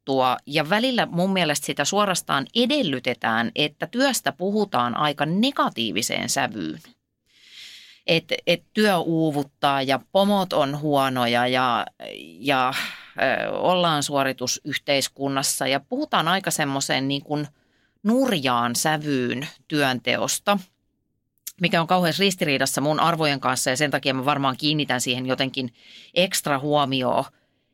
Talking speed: 110 wpm